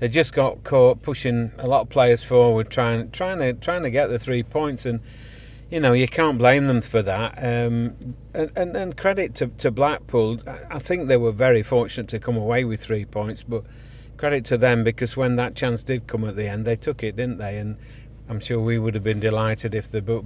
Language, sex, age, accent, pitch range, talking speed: English, male, 40-59, British, 115-130 Hz, 230 wpm